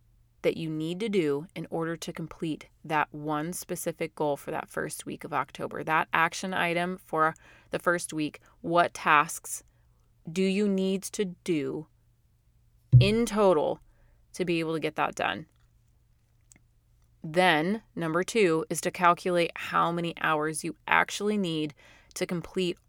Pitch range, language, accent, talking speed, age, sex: 150-185 Hz, English, American, 145 wpm, 30-49, female